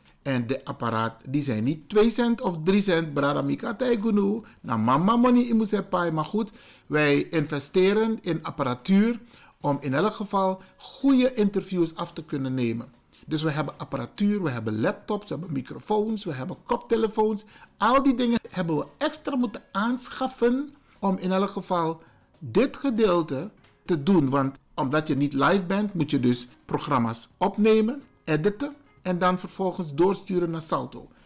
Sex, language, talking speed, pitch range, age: male, Dutch, 140 wpm, 145-220 Hz, 60-79